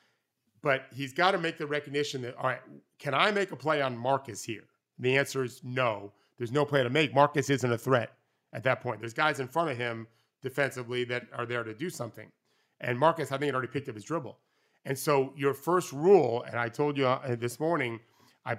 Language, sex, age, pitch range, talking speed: English, male, 30-49, 125-150 Hz, 225 wpm